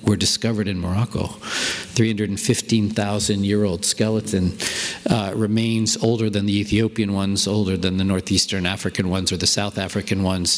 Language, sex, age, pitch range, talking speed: English, male, 50-69, 95-115 Hz, 135 wpm